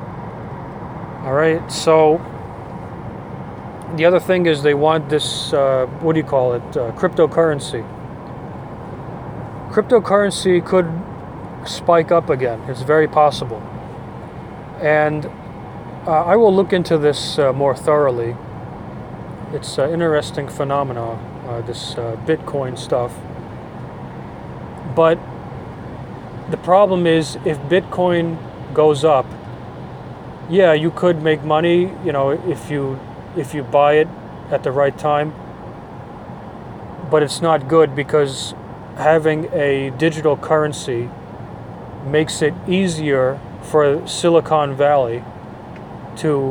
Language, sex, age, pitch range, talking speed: English, male, 40-59, 135-160 Hz, 110 wpm